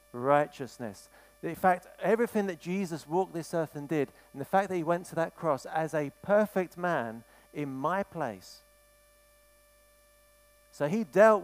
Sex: male